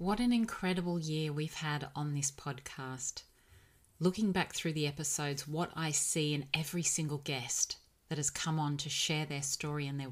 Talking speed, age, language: 185 wpm, 30-49, English